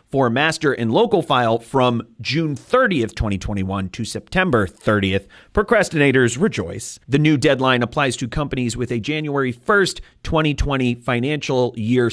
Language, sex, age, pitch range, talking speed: English, male, 30-49, 115-150 Hz, 135 wpm